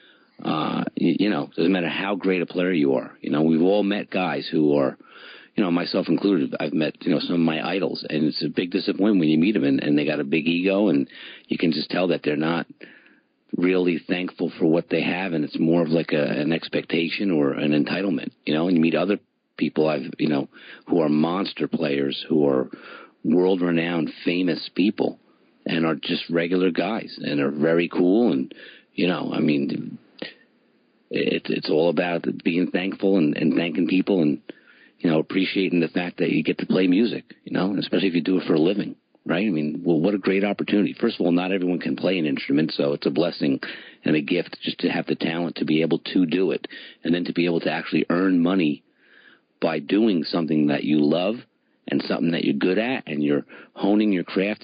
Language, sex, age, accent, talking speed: English, male, 50-69, American, 220 wpm